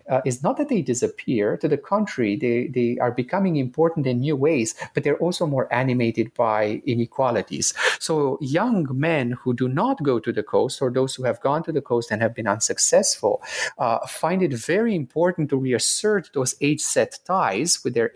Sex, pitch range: male, 125-155 Hz